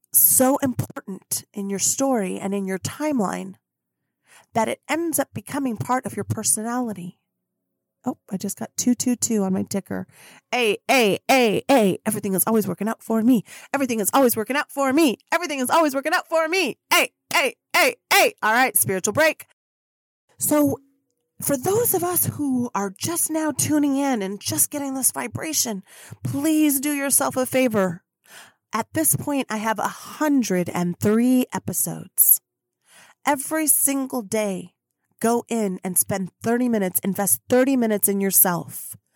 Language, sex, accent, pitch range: English, female, American, 195-270 Hz